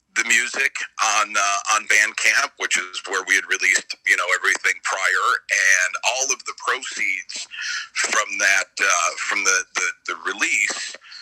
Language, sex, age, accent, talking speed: English, male, 50-69, American, 155 wpm